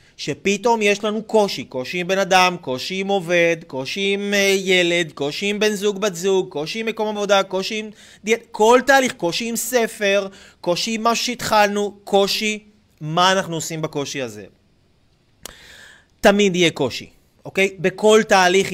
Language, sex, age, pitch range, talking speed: Hebrew, male, 30-49, 180-230 Hz, 155 wpm